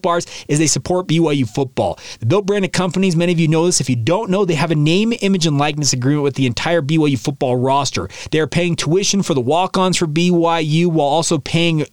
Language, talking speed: English, 230 wpm